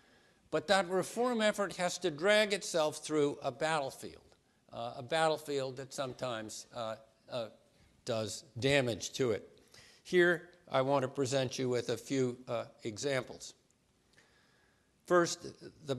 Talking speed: 130 wpm